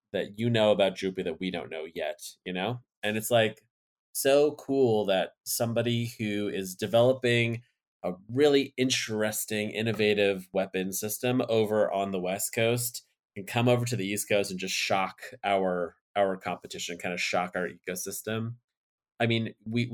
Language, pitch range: English, 95-115 Hz